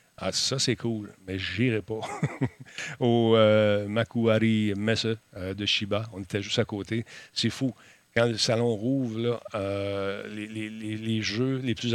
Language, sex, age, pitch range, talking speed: French, male, 50-69, 100-115 Hz, 165 wpm